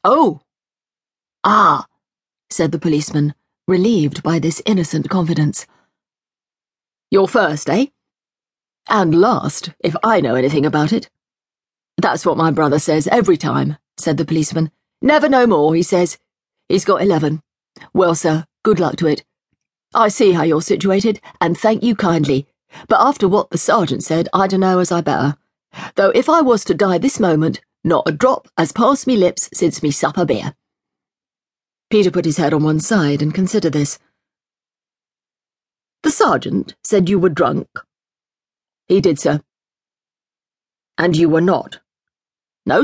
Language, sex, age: English, female, 40-59